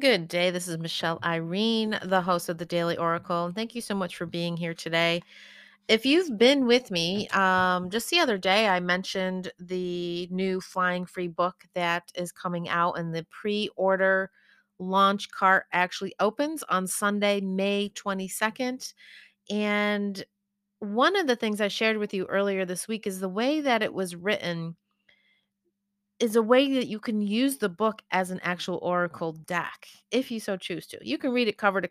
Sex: female